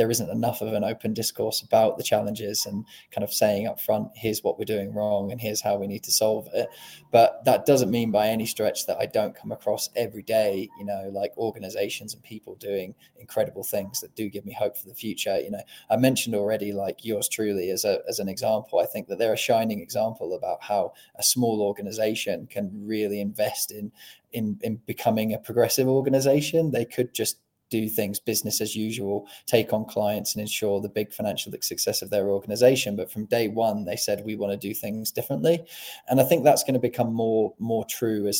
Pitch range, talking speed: 105-125 Hz, 215 wpm